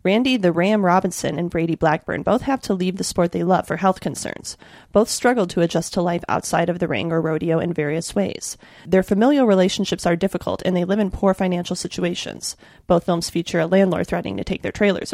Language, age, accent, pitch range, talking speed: English, 30-49, American, 175-205 Hz, 220 wpm